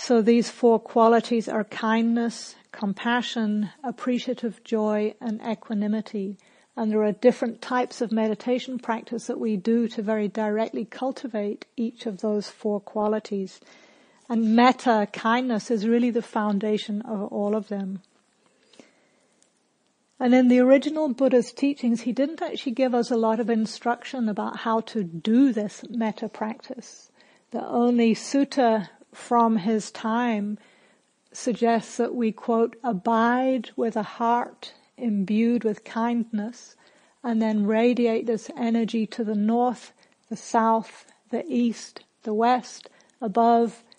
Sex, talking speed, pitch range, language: female, 130 wpm, 215-240 Hz, English